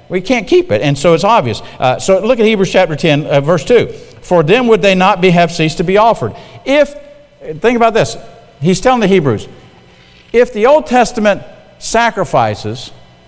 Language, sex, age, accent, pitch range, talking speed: English, male, 50-69, American, 125-195 Hz, 190 wpm